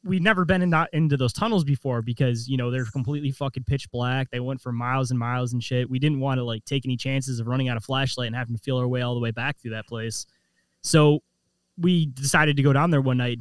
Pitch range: 125-155 Hz